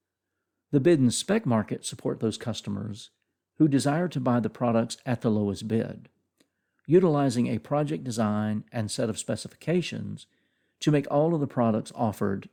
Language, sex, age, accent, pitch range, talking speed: English, male, 50-69, American, 110-135 Hz, 160 wpm